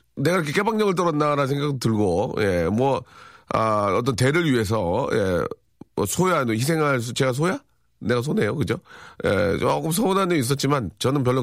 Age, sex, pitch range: 40-59, male, 100-150 Hz